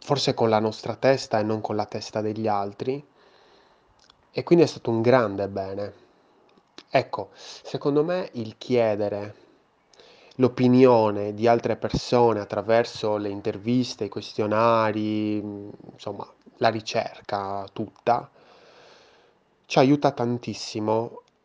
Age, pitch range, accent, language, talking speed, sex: 20-39, 100-120 Hz, native, Italian, 110 wpm, male